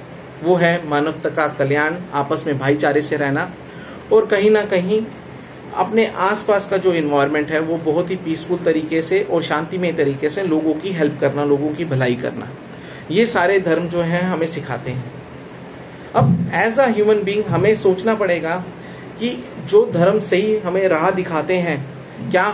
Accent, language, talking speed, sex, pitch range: native, Hindi, 170 wpm, male, 150-190 Hz